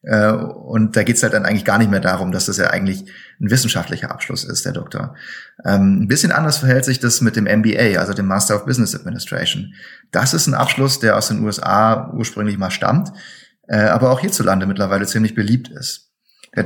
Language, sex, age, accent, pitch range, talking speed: German, male, 30-49, German, 105-125 Hz, 205 wpm